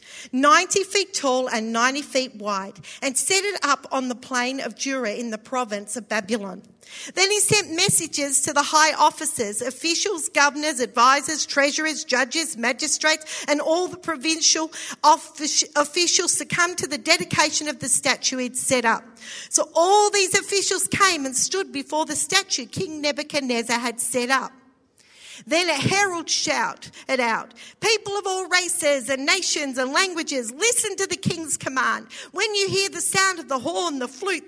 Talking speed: 165 wpm